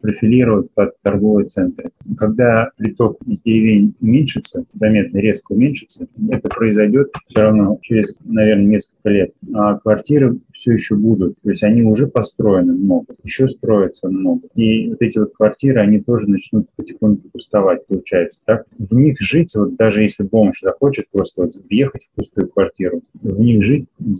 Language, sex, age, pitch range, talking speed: Russian, male, 30-49, 105-120 Hz, 155 wpm